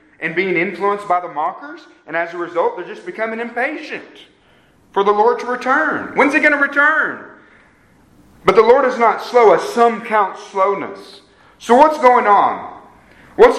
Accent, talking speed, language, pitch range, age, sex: American, 170 wpm, English, 170-280 Hz, 40-59, male